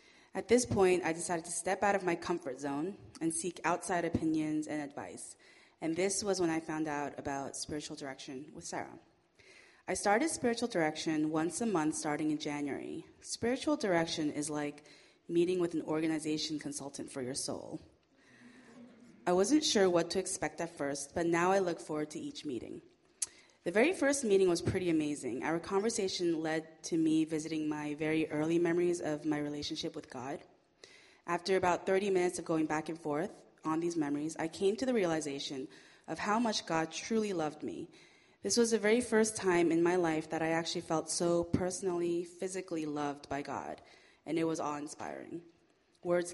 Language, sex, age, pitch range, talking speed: English, female, 20-39, 155-190 Hz, 180 wpm